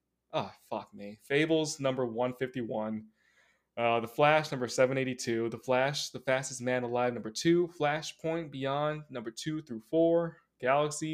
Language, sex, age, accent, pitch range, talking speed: English, male, 20-39, American, 130-160 Hz, 140 wpm